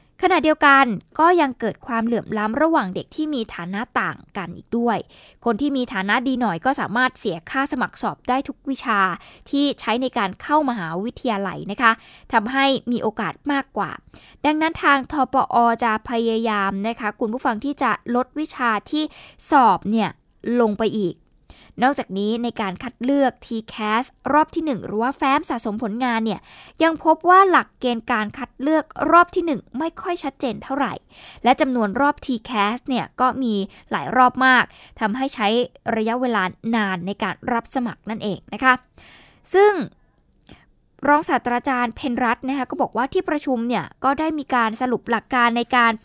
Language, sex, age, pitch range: Thai, female, 10-29, 220-275 Hz